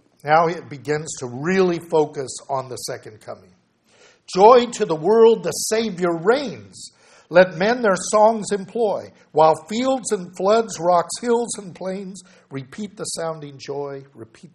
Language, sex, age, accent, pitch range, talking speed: English, male, 60-79, American, 145-200 Hz, 145 wpm